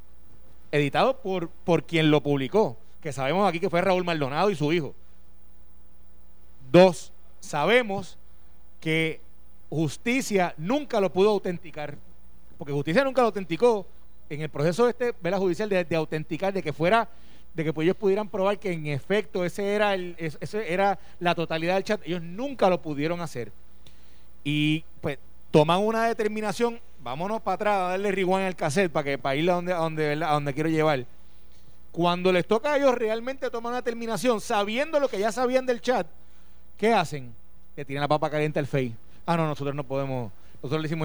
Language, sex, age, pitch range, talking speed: Spanish, male, 30-49, 145-205 Hz, 180 wpm